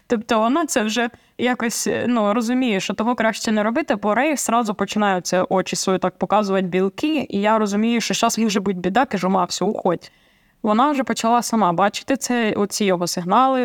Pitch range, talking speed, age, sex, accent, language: 190-235 Hz, 180 wpm, 20-39, female, native, Ukrainian